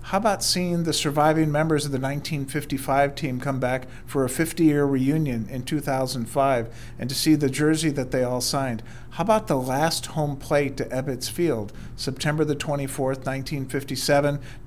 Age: 40-59